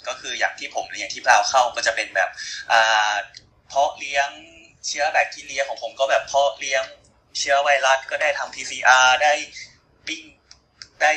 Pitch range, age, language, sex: 110-140 Hz, 20-39, Thai, male